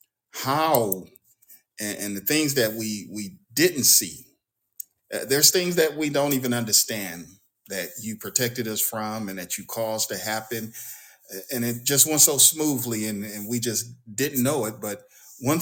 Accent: American